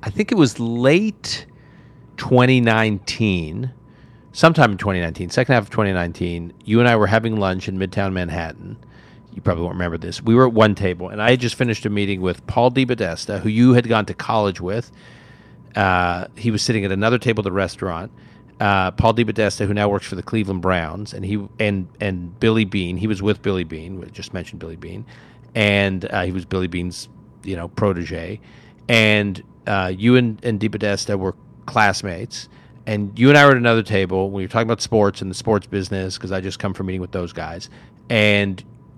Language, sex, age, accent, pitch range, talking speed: English, male, 40-59, American, 95-115 Hz, 200 wpm